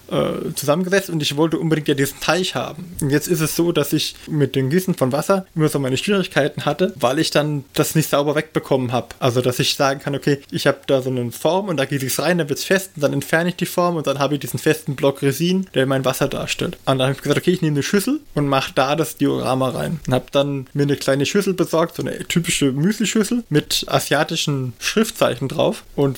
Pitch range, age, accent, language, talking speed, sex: 140-175 Hz, 20-39, German, German, 250 wpm, male